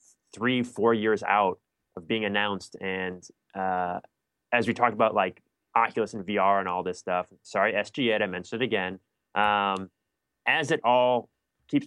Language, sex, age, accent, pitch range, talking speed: English, male, 20-39, American, 95-125 Hz, 160 wpm